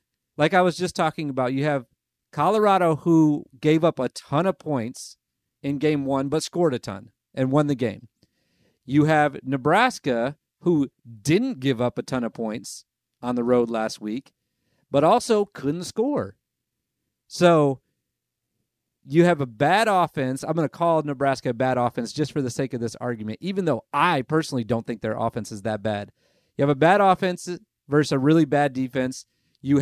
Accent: American